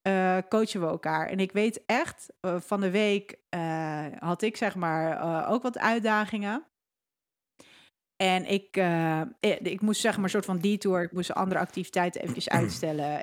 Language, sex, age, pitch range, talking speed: Dutch, female, 40-59, 175-210 Hz, 170 wpm